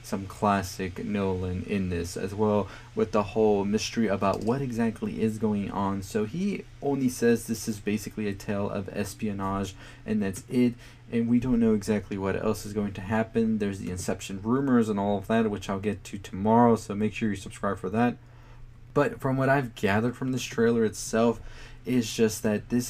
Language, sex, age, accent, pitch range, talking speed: English, male, 20-39, American, 100-120 Hz, 195 wpm